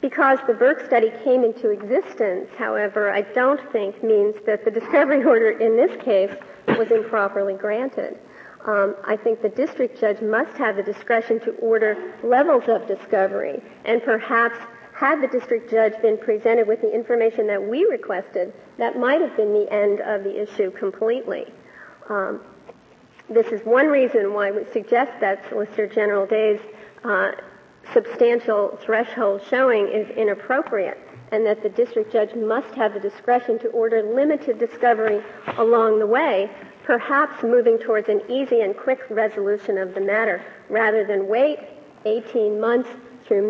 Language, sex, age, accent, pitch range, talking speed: English, female, 50-69, American, 210-250 Hz, 155 wpm